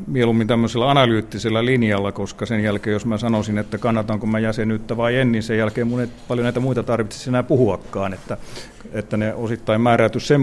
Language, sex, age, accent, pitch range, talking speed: Finnish, male, 50-69, native, 110-130 Hz, 185 wpm